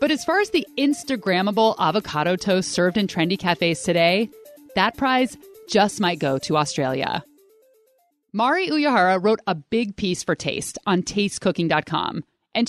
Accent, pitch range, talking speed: American, 175-265 Hz, 145 wpm